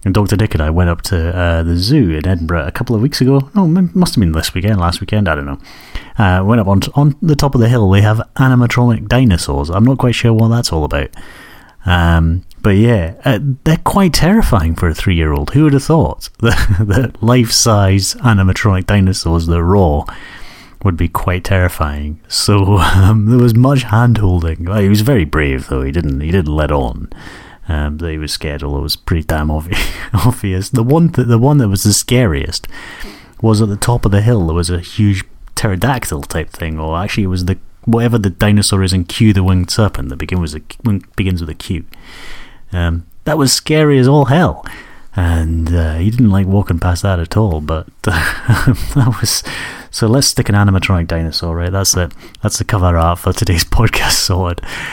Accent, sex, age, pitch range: British, male, 30-49, 85-115 Hz